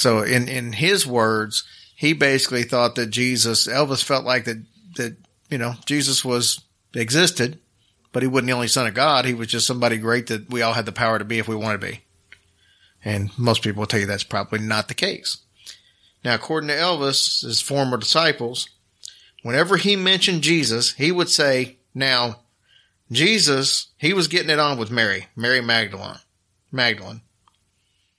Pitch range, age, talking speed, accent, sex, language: 105-135 Hz, 40-59, 175 wpm, American, male, English